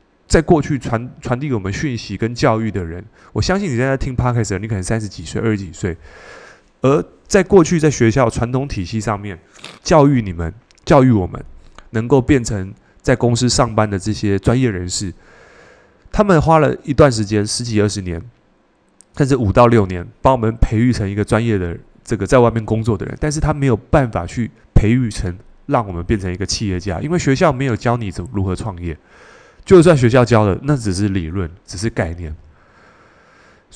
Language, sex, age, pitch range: Chinese, male, 20-39, 95-130 Hz